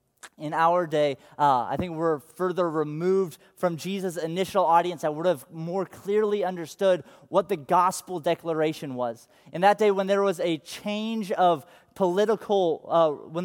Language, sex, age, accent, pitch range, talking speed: English, male, 30-49, American, 165-205 Hz, 160 wpm